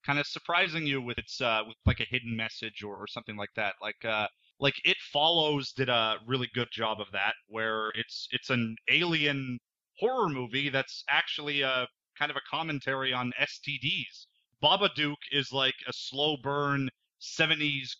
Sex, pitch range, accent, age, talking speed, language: male, 125-145 Hz, American, 30-49, 175 wpm, English